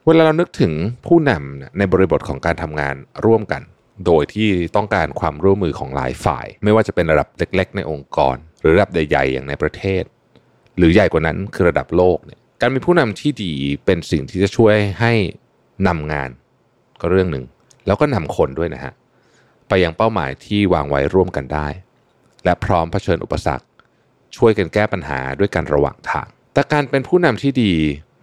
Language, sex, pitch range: Thai, male, 80-120 Hz